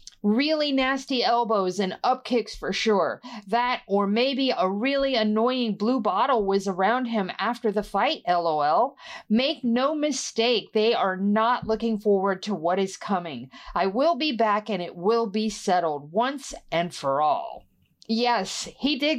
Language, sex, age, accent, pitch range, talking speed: English, female, 40-59, American, 205-260 Hz, 155 wpm